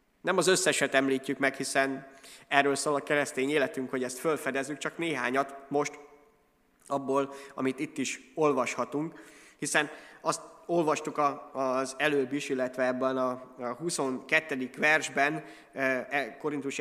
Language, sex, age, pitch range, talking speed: Hungarian, male, 20-39, 125-150 Hz, 120 wpm